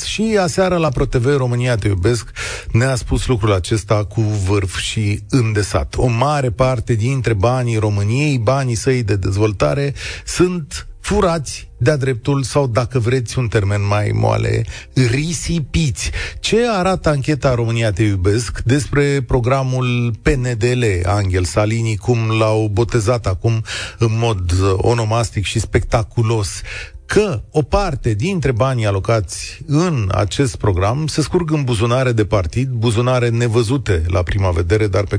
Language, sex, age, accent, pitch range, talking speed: Romanian, male, 40-59, native, 105-130 Hz, 135 wpm